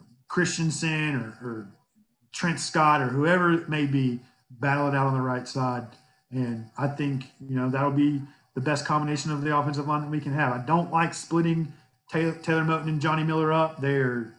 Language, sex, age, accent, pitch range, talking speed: English, male, 40-59, American, 130-150 Hz, 195 wpm